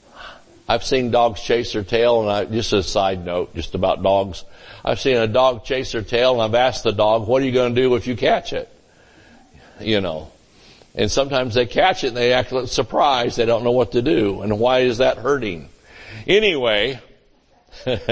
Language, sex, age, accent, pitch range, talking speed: English, male, 60-79, American, 110-130 Hz, 200 wpm